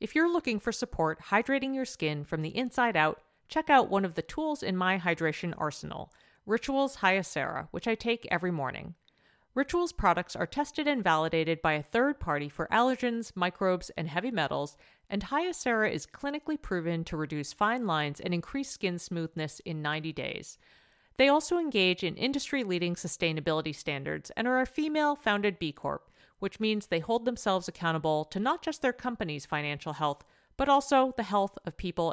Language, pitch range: English, 165-250 Hz